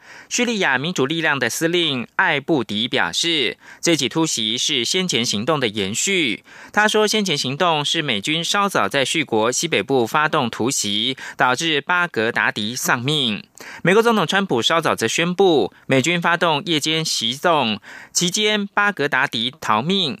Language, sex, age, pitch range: German, male, 20-39, 135-190 Hz